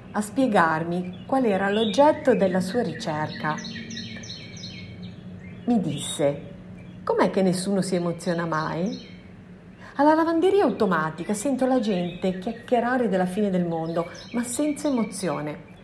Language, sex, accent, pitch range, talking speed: Italian, female, native, 180-235 Hz, 115 wpm